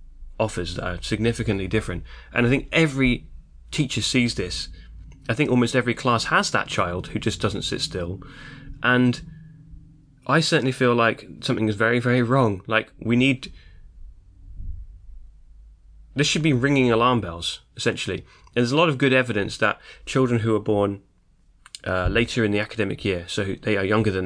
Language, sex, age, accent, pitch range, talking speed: English, male, 20-39, British, 90-120 Hz, 165 wpm